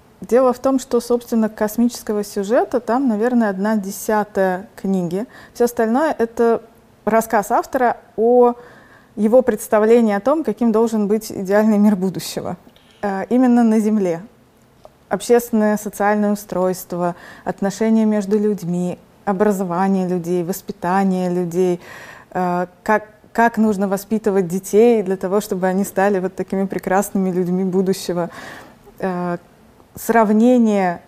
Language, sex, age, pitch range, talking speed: Russian, female, 20-39, 190-225 Hz, 110 wpm